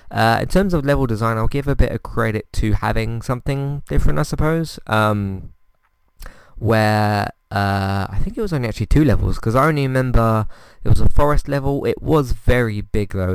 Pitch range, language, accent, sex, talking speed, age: 95-120 Hz, English, British, male, 195 wpm, 20-39